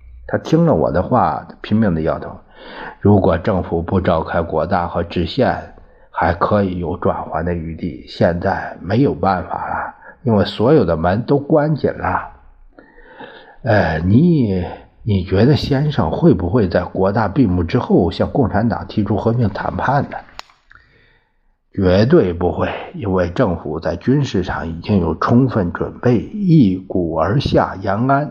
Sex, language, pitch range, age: male, Chinese, 85-115 Hz, 60-79